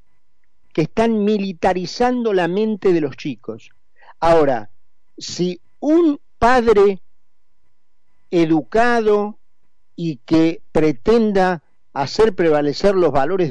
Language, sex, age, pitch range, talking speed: Spanish, male, 50-69, 135-180 Hz, 90 wpm